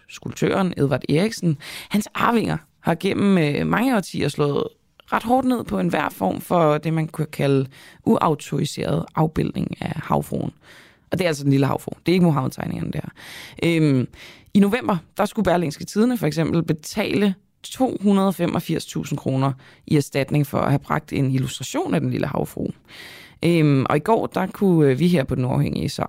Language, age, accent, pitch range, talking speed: Danish, 20-39, native, 145-195 Hz, 170 wpm